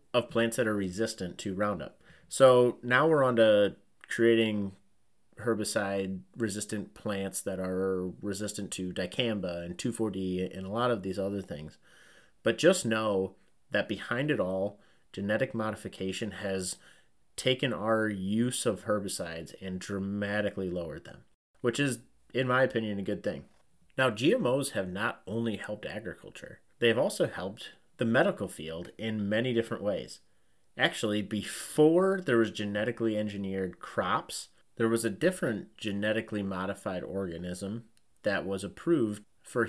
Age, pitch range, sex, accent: 30-49, 95-115 Hz, male, American